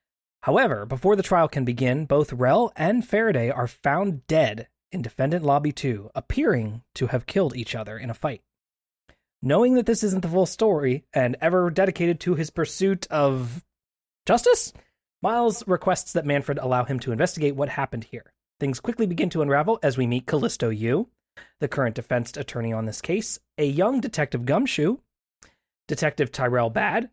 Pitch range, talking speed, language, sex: 130-205 Hz, 170 wpm, English, male